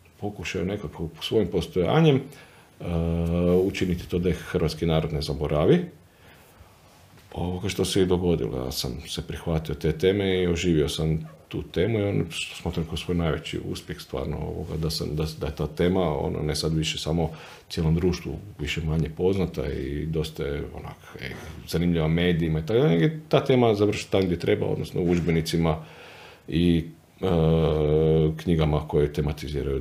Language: Croatian